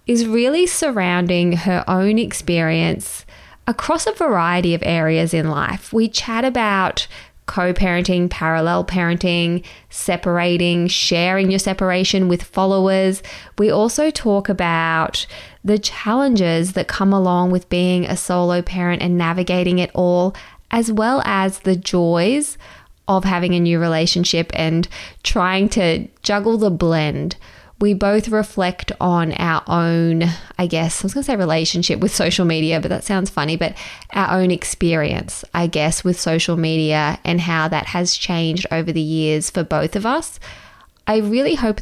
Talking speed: 150 wpm